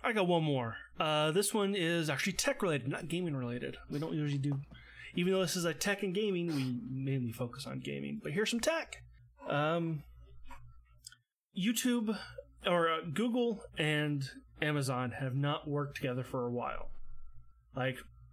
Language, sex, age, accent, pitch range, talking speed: English, male, 30-49, American, 125-160 Hz, 165 wpm